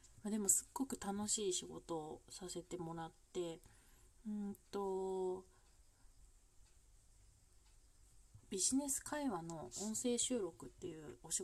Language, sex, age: Japanese, female, 30-49